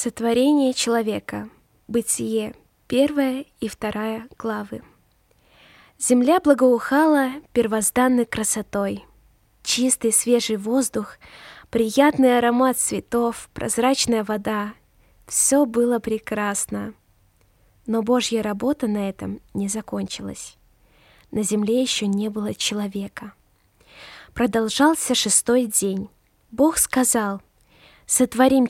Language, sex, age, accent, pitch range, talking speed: Russian, female, 20-39, native, 210-250 Hz, 85 wpm